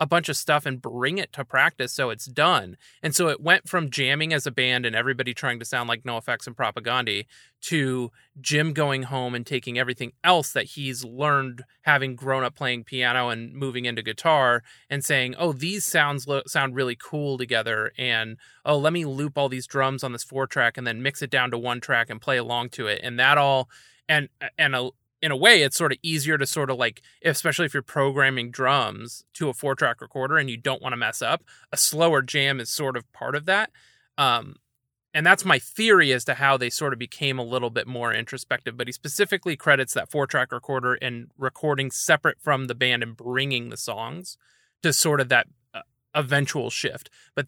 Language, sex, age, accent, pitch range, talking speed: English, male, 30-49, American, 125-150 Hz, 215 wpm